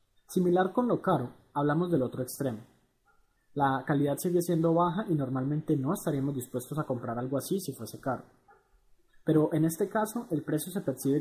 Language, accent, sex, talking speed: Spanish, Colombian, male, 175 wpm